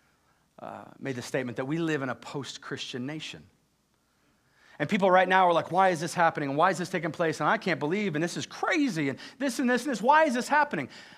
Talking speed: 240 wpm